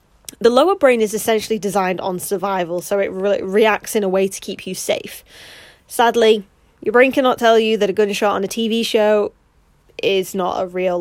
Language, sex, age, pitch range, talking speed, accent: English, female, 20-39, 195-240 Hz, 190 wpm, British